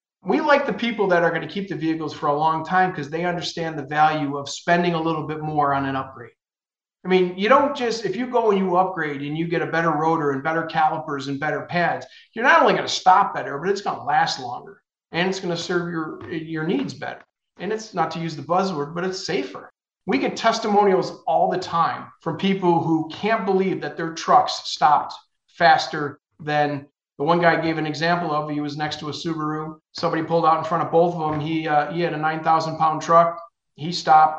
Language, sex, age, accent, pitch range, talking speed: English, male, 40-59, American, 150-185 Hz, 230 wpm